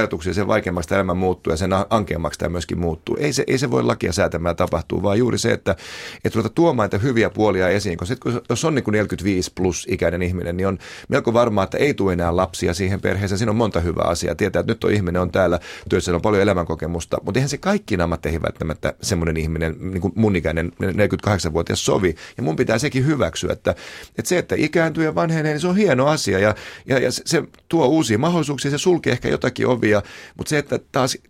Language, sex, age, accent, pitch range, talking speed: Finnish, male, 30-49, native, 85-115 Hz, 215 wpm